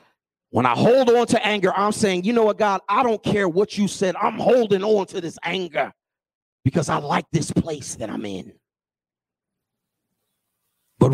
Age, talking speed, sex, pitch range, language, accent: 40-59, 180 wpm, male, 135-180 Hz, English, American